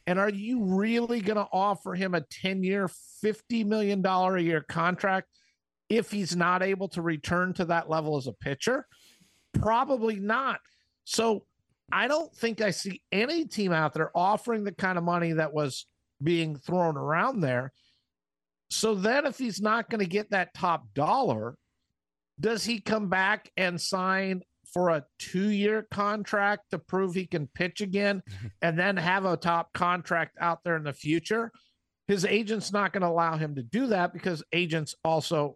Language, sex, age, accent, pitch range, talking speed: English, male, 50-69, American, 160-200 Hz, 165 wpm